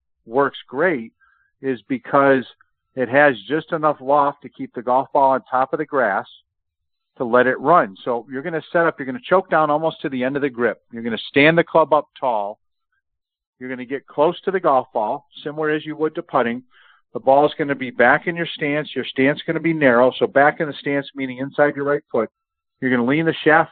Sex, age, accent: male, 50-69, American